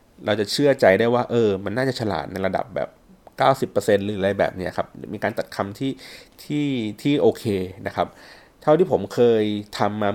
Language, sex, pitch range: Thai, male, 95-120 Hz